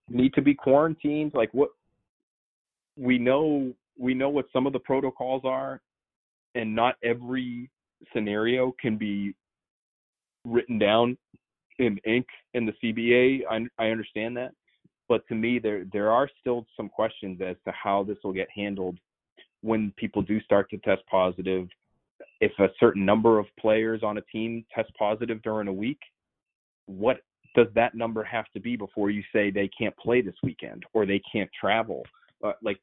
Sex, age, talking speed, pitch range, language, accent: male, 30-49, 165 wpm, 100-120 Hz, English, American